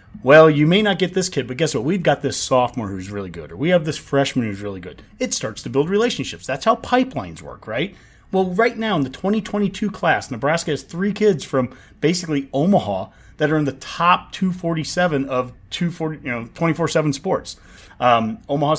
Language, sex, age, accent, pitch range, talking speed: English, male, 30-49, American, 120-155 Hz, 200 wpm